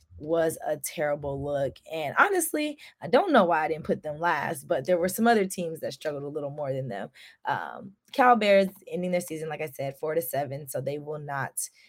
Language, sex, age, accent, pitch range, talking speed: English, female, 20-39, American, 145-180 Hz, 220 wpm